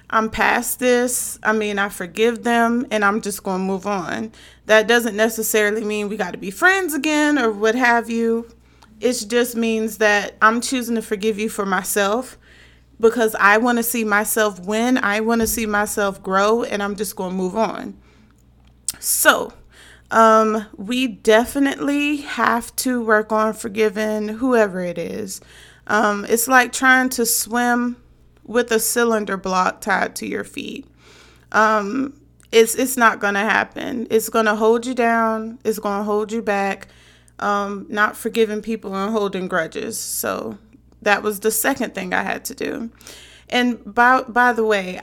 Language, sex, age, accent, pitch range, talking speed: English, female, 30-49, American, 205-235 Hz, 165 wpm